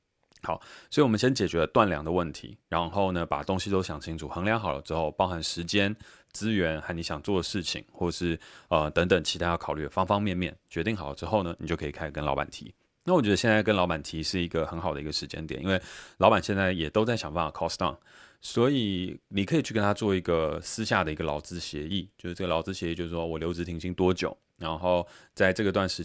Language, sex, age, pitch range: Chinese, male, 20-39, 80-95 Hz